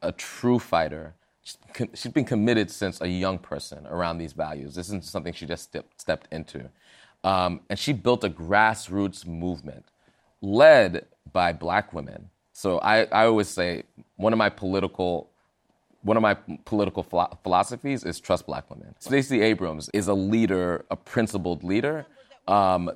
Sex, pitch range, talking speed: male, 90-110 Hz, 155 wpm